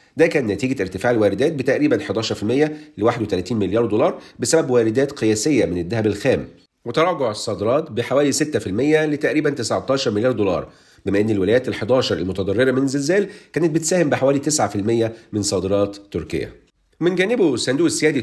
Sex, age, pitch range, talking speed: male, 40-59, 110-155 Hz, 145 wpm